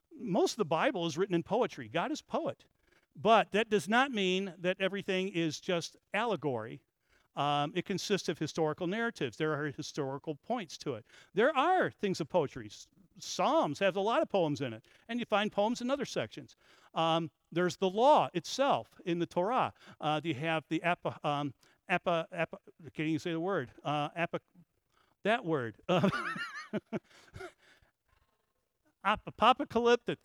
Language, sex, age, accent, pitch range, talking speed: English, male, 50-69, American, 155-215 Hz, 160 wpm